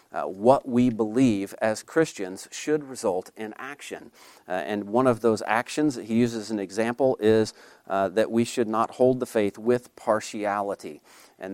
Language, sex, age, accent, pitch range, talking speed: English, male, 50-69, American, 110-130 Hz, 175 wpm